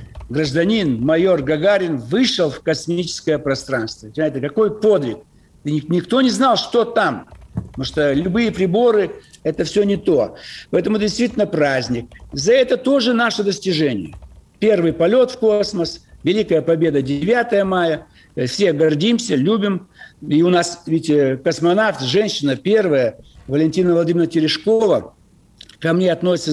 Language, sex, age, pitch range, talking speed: Russian, male, 60-79, 155-205 Hz, 125 wpm